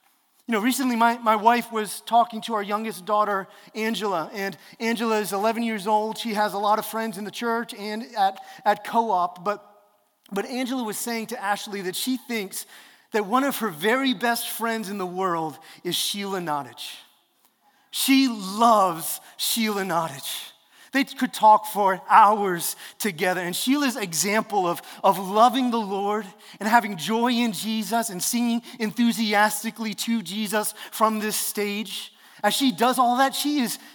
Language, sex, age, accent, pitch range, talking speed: English, male, 30-49, American, 195-235 Hz, 165 wpm